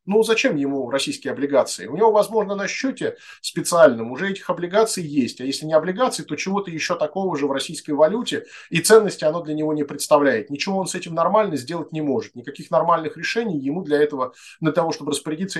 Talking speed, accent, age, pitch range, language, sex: 200 wpm, native, 30-49, 140-180 Hz, Russian, male